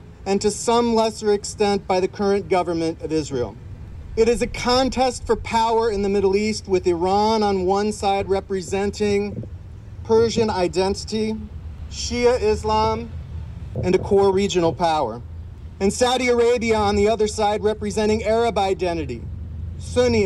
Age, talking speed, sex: 40-59, 140 wpm, male